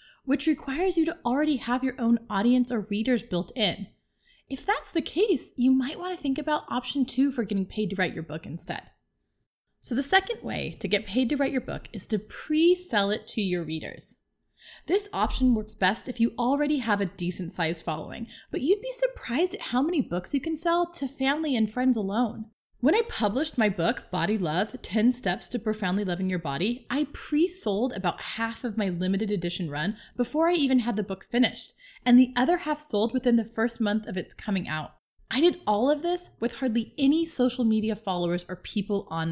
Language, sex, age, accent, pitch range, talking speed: English, female, 20-39, American, 200-270 Hz, 210 wpm